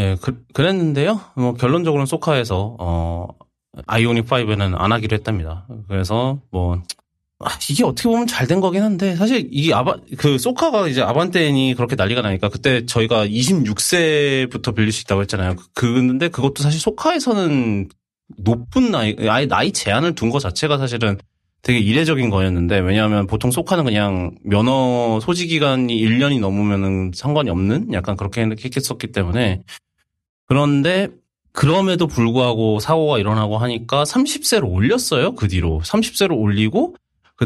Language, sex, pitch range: Korean, male, 105-145 Hz